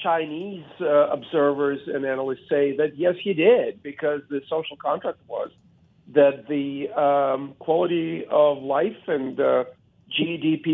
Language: English